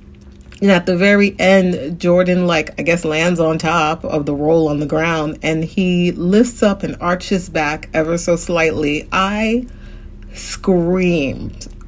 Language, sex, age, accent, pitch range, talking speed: English, female, 30-49, American, 155-185 Hz, 150 wpm